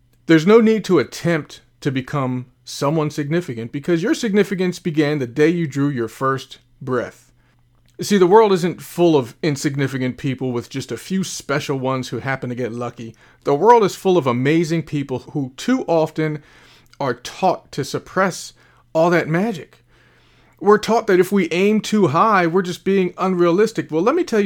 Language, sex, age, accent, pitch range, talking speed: English, male, 40-59, American, 130-180 Hz, 175 wpm